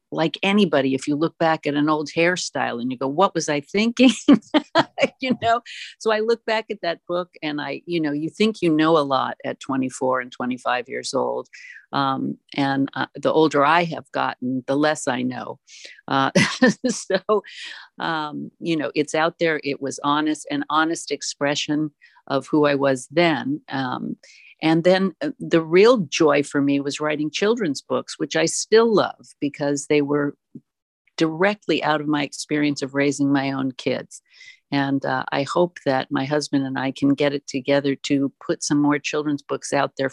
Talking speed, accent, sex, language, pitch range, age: 185 wpm, American, female, English, 135-170 Hz, 50-69